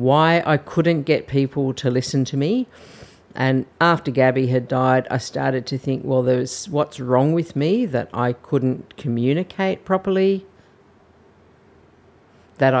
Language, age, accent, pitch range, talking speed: English, 50-69, Australian, 125-155 Hz, 140 wpm